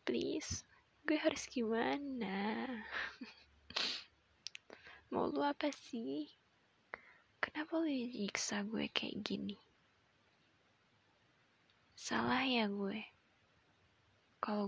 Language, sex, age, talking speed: Indonesian, female, 20-39, 75 wpm